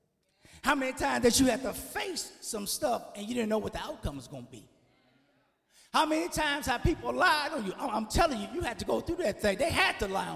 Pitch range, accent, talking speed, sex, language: 210-315 Hz, American, 250 wpm, male, English